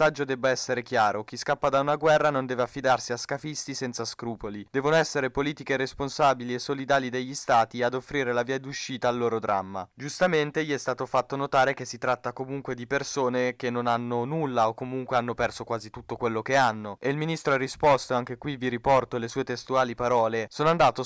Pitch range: 120-145 Hz